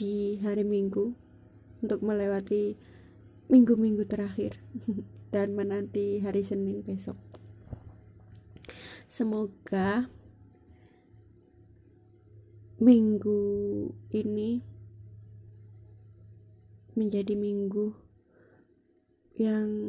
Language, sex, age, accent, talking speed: Indonesian, female, 20-39, native, 50 wpm